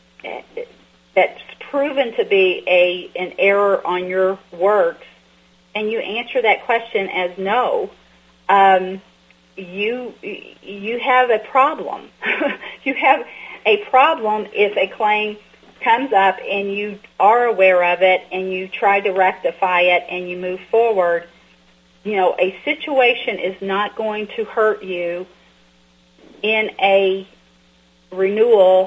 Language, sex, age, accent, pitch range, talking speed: English, female, 40-59, American, 180-215 Hz, 125 wpm